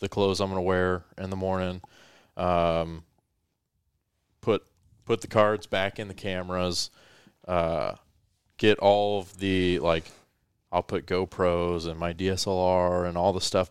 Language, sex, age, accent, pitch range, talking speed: English, male, 30-49, American, 85-95 Hz, 150 wpm